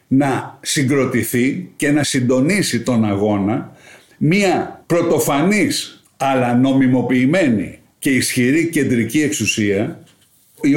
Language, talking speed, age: Greek, 90 wpm, 60-79